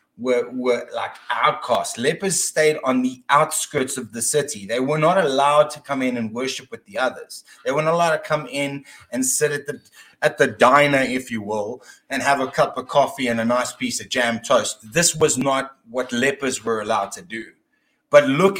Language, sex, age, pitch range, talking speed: English, male, 30-49, 125-200 Hz, 205 wpm